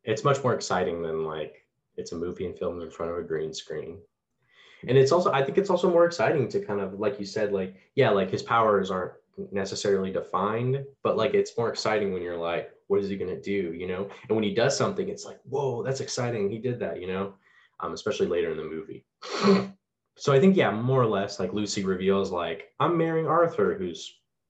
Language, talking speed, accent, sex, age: English, 225 wpm, American, male, 20-39